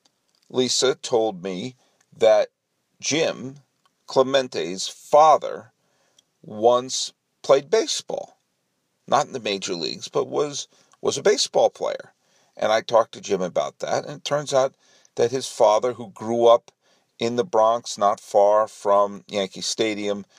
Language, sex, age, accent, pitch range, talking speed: English, male, 50-69, American, 105-175 Hz, 135 wpm